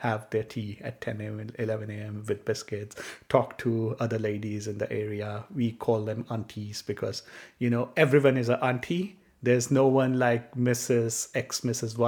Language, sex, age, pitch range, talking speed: English, male, 30-49, 115-155 Hz, 180 wpm